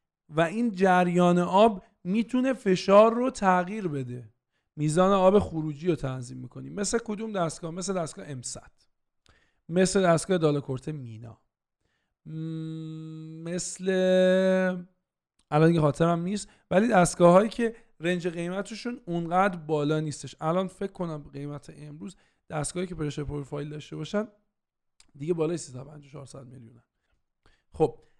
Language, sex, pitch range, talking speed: Persian, male, 145-195 Hz, 120 wpm